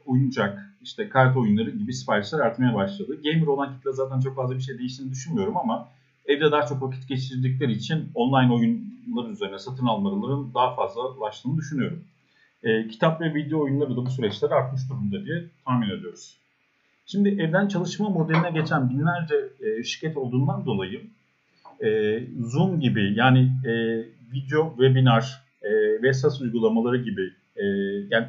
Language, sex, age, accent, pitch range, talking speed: Turkish, male, 40-59, native, 125-160 Hz, 145 wpm